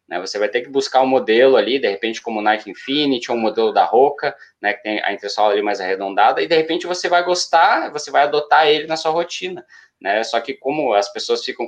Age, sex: 20-39, male